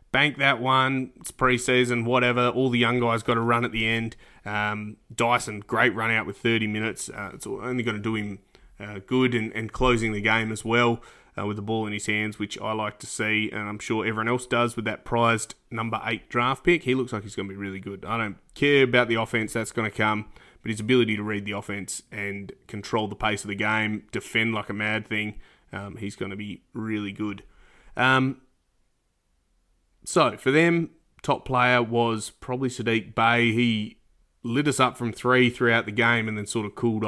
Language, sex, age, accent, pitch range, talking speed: English, male, 20-39, Australian, 105-125 Hz, 215 wpm